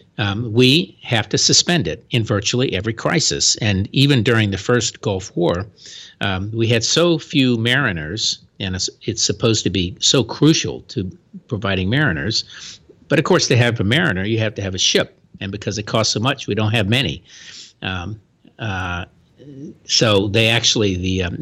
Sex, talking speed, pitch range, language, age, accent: male, 175 wpm, 95-120 Hz, English, 50-69, American